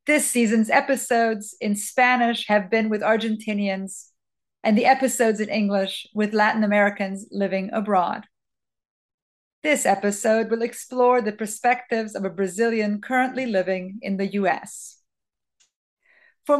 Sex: female